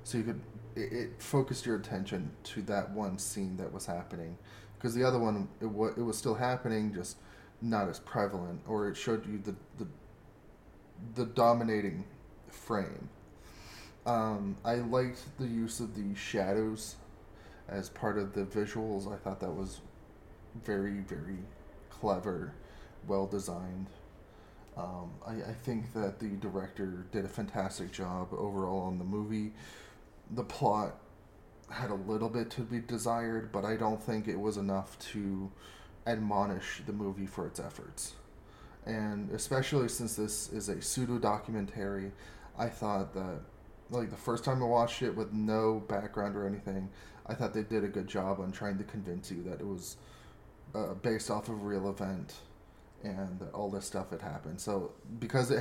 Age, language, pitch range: 20-39, English, 100-115 Hz